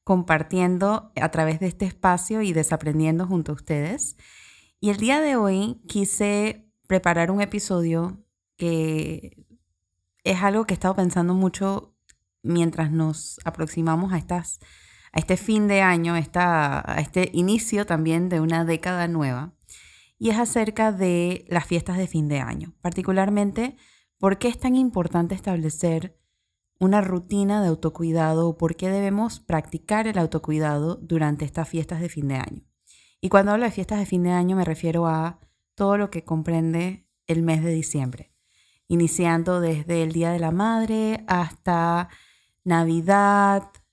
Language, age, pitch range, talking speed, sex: Spanish, 20-39, 160-195 Hz, 150 wpm, female